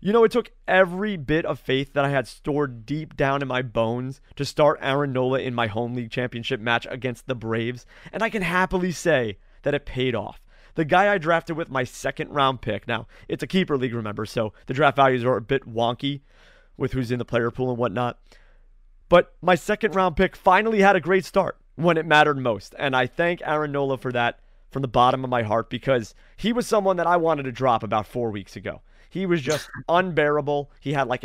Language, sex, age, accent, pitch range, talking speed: English, male, 30-49, American, 125-175 Hz, 225 wpm